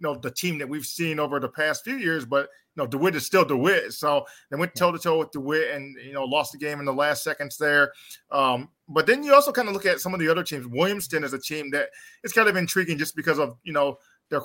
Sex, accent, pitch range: male, American, 140-165 Hz